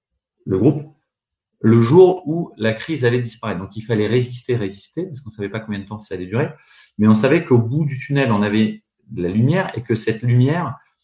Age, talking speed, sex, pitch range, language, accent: 40-59, 225 wpm, male, 95-120 Hz, French, French